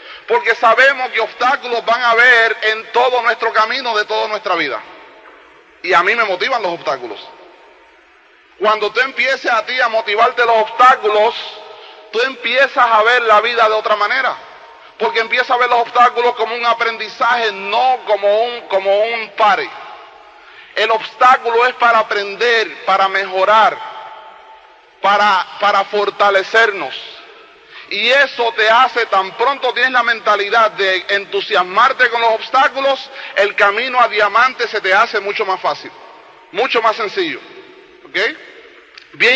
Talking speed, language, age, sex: 145 wpm, Spanish, 30-49, male